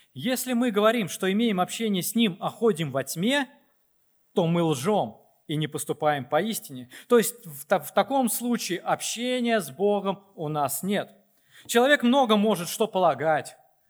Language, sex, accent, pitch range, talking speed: Russian, male, native, 155-225 Hz, 150 wpm